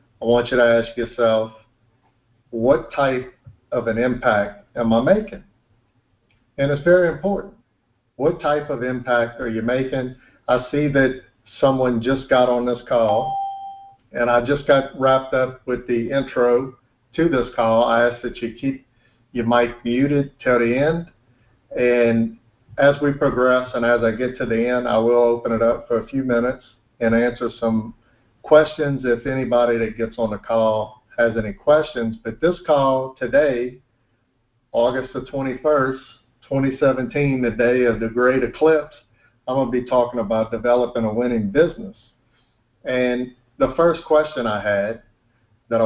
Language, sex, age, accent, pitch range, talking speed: English, male, 50-69, American, 115-130 Hz, 160 wpm